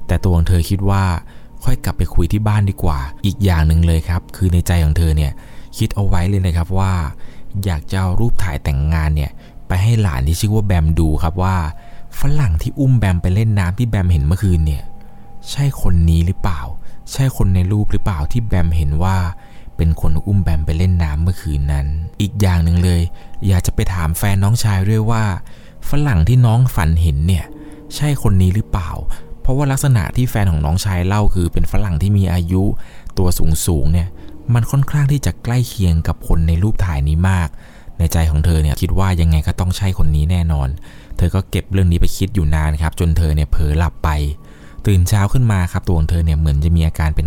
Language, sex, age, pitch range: Thai, male, 20-39, 80-105 Hz